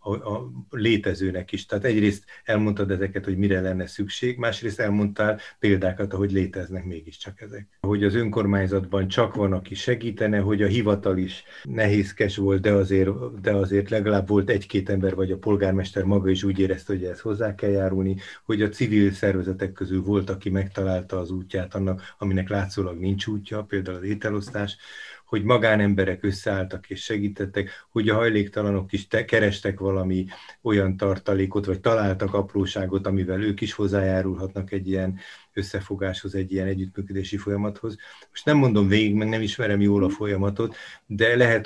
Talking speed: 155 wpm